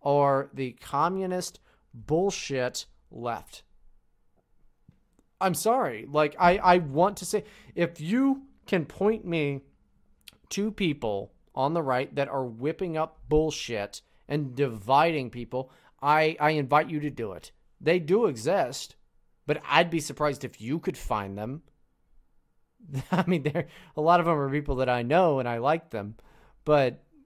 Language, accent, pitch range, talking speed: English, American, 125-170 Hz, 145 wpm